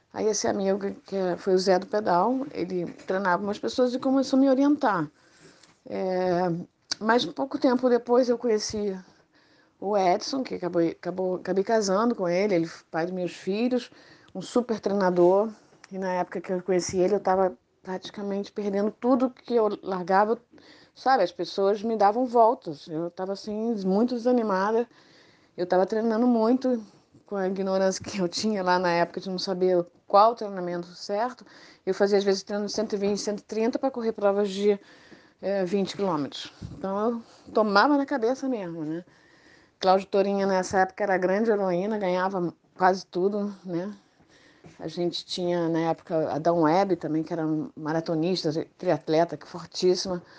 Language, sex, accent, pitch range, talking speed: Portuguese, female, Brazilian, 175-215 Hz, 165 wpm